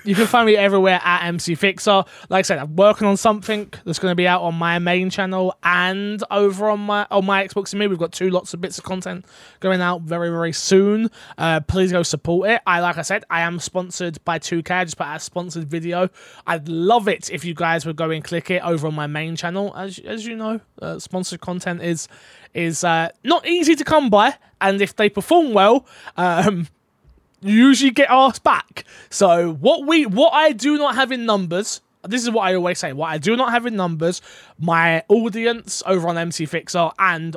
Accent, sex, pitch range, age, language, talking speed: British, male, 165-205 Hz, 20-39, English, 220 wpm